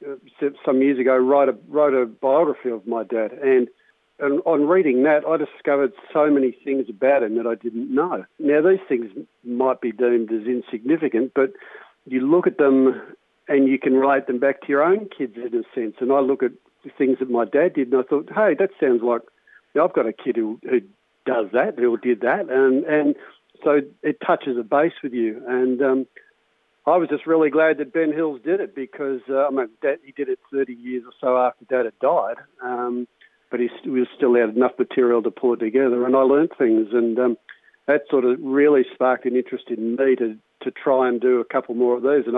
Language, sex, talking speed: English, male, 225 wpm